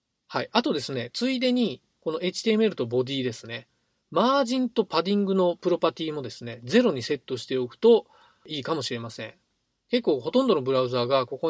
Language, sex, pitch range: Japanese, male, 125-205 Hz